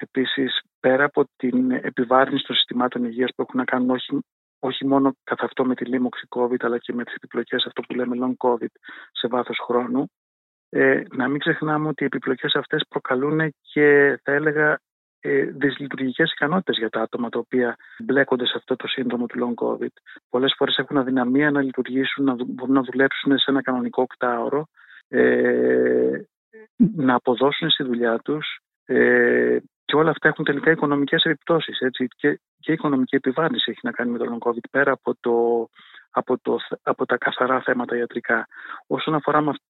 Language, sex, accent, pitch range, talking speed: Greek, male, native, 120-145 Hz, 170 wpm